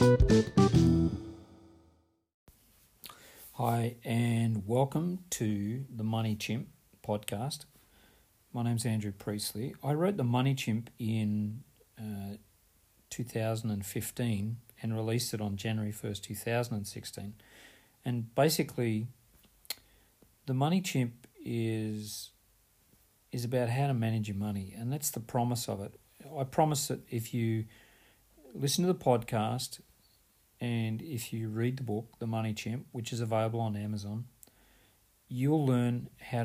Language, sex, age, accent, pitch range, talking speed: English, male, 40-59, Australian, 110-125 Hz, 120 wpm